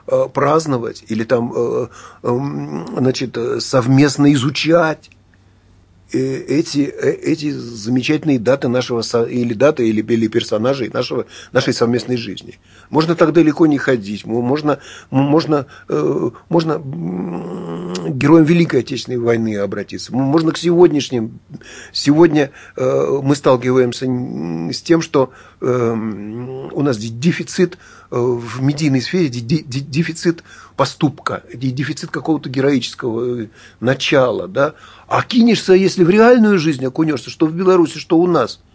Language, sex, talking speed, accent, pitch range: Russian, male, 100 wpm, native, 120-165 Hz